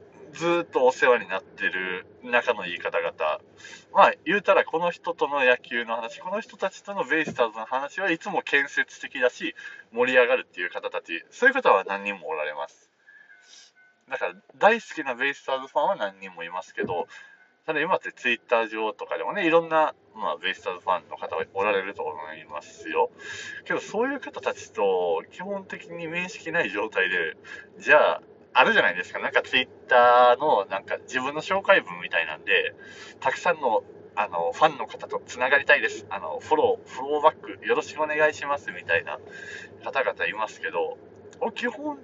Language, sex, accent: Japanese, male, native